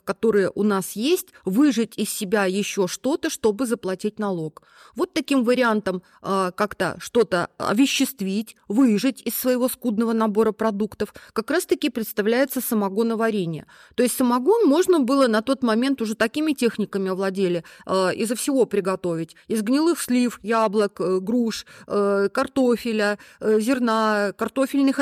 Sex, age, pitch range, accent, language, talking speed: female, 30-49, 195-245 Hz, native, Russian, 135 wpm